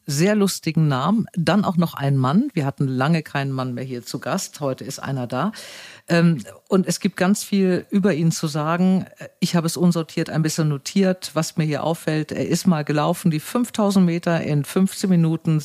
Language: German